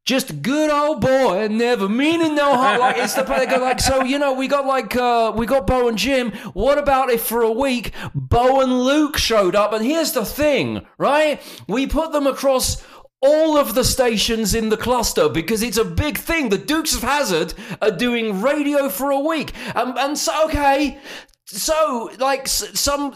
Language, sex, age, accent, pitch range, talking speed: English, male, 30-49, British, 205-275 Hz, 195 wpm